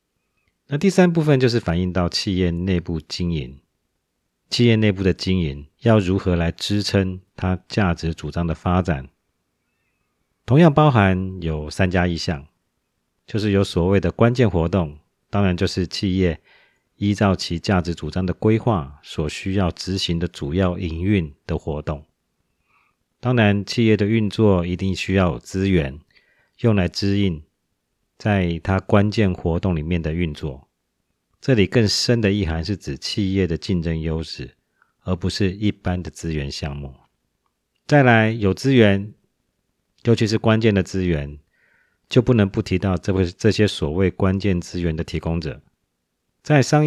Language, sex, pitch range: Chinese, male, 85-105 Hz